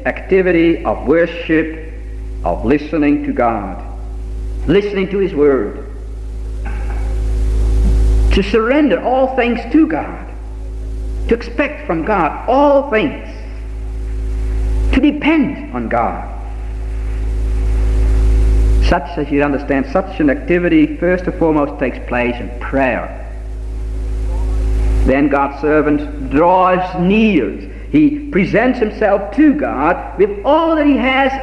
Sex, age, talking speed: male, 60-79, 105 wpm